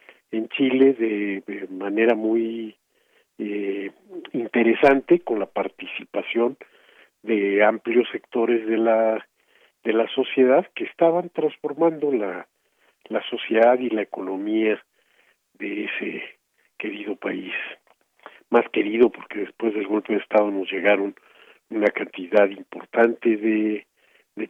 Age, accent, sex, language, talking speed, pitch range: 50-69, Mexican, male, Spanish, 115 wpm, 105-135 Hz